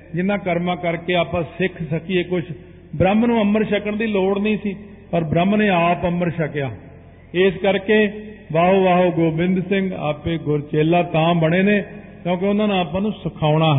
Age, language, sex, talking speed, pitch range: 50-69, Punjabi, male, 170 wpm, 155-185 Hz